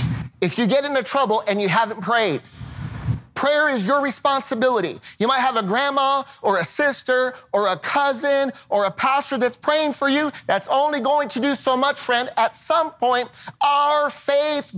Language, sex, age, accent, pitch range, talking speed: English, male, 30-49, American, 210-280 Hz, 180 wpm